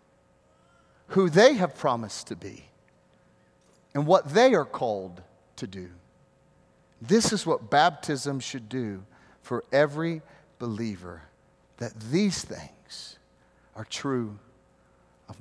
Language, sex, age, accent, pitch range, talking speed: English, male, 40-59, American, 130-195 Hz, 110 wpm